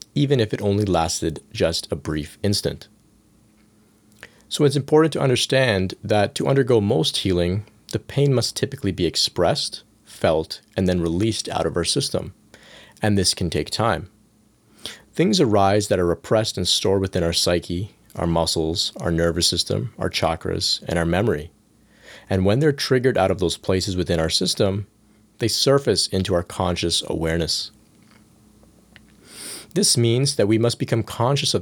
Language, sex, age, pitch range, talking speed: English, male, 30-49, 90-110 Hz, 160 wpm